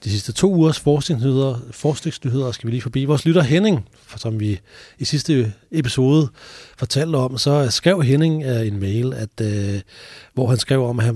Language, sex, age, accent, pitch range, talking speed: Danish, male, 30-49, native, 115-150 Hz, 175 wpm